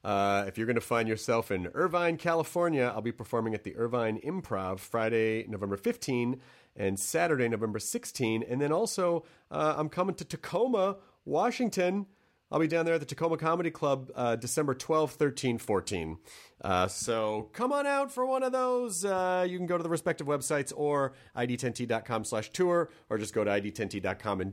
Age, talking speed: 30-49, 180 wpm